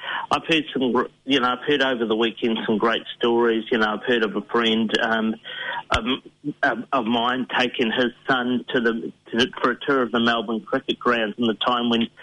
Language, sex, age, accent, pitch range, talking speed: English, male, 40-59, Australian, 120-150 Hz, 205 wpm